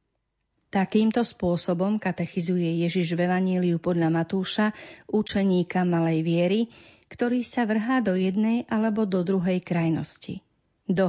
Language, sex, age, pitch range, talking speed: Slovak, female, 40-59, 175-215 Hz, 115 wpm